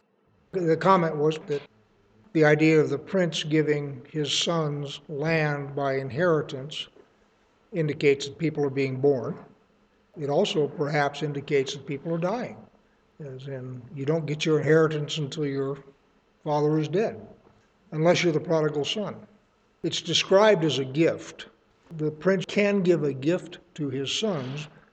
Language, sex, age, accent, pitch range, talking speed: English, male, 60-79, American, 145-175 Hz, 145 wpm